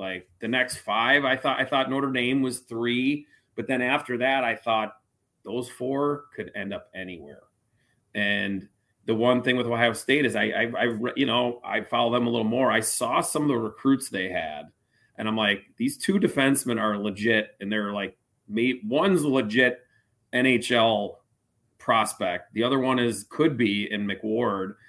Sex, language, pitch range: male, English, 105-125 Hz